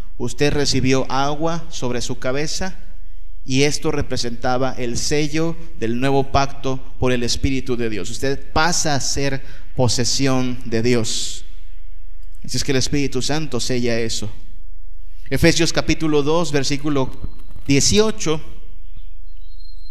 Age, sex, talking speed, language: 30-49, male, 120 wpm, Spanish